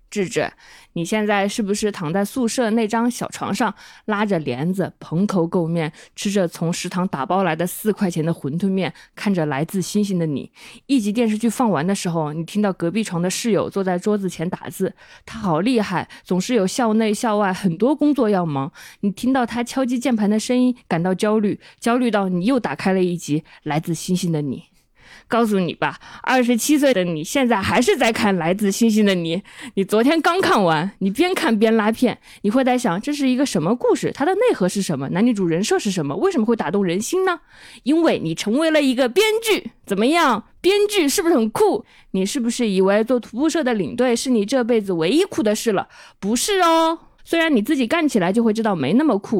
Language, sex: Chinese, female